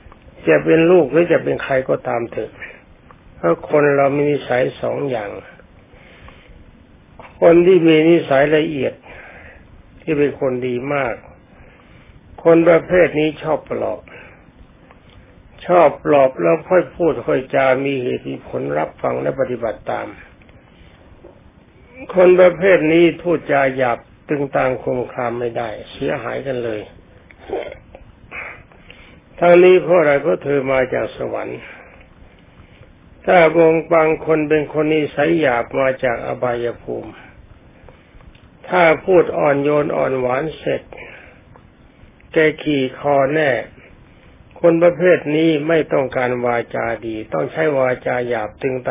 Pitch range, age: 125-160 Hz, 60-79